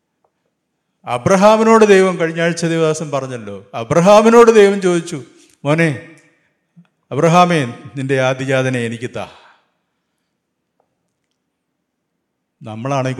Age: 50-69